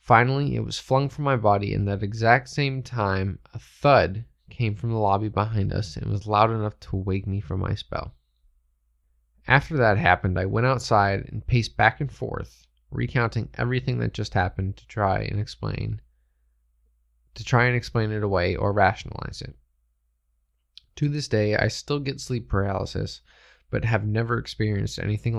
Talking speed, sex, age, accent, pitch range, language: 175 wpm, male, 20-39, American, 90-120 Hz, English